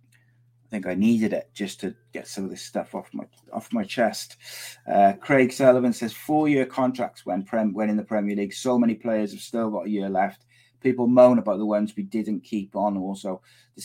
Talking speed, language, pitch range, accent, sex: 210 wpm, English, 105-125 Hz, British, male